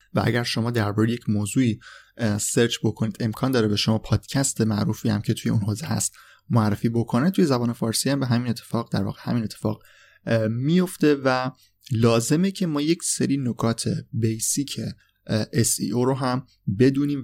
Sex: male